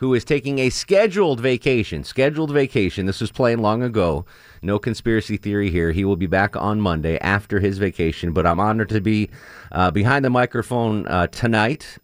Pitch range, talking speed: 85-115 Hz, 185 wpm